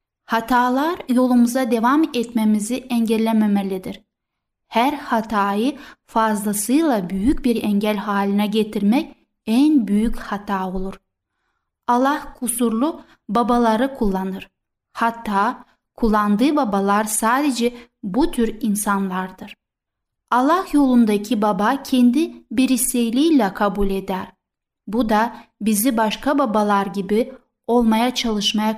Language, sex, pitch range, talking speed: Turkish, female, 210-260 Hz, 90 wpm